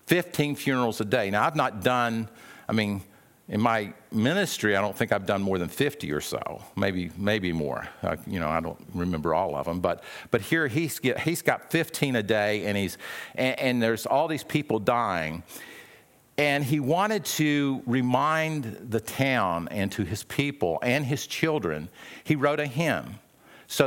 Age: 50-69